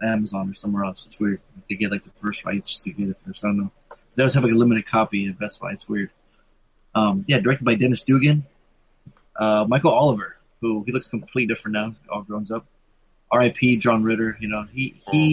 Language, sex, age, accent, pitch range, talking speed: English, male, 20-39, American, 110-130 Hz, 225 wpm